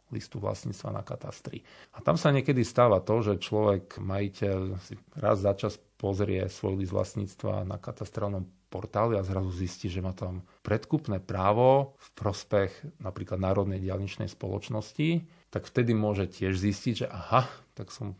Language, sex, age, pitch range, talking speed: Slovak, male, 40-59, 100-110 Hz, 155 wpm